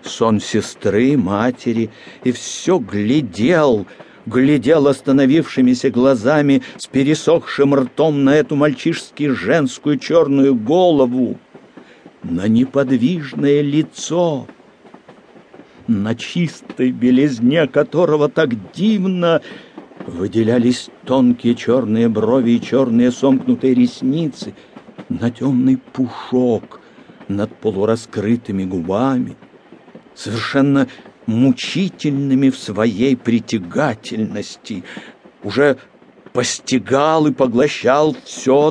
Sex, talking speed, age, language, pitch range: male, 80 wpm, 60-79, English, 115-145 Hz